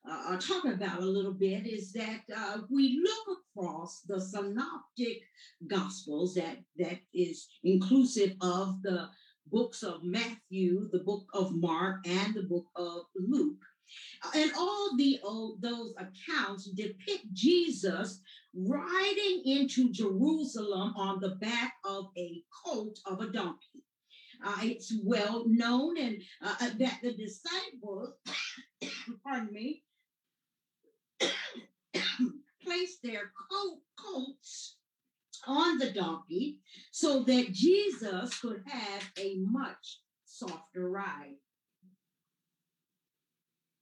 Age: 50-69